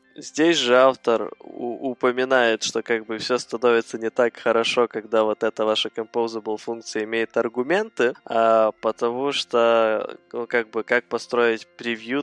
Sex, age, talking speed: male, 20-39, 135 wpm